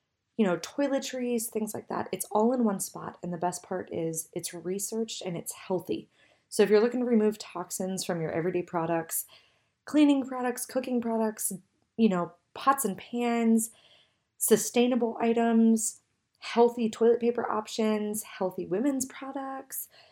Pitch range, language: 180-230 Hz, English